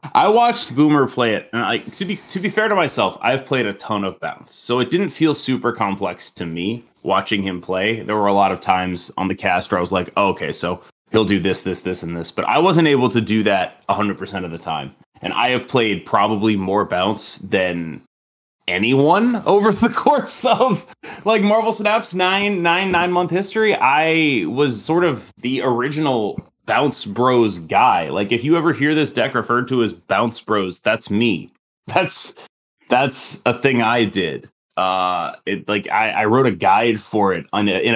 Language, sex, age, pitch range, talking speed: English, male, 30-49, 95-135 Hz, 200 wpm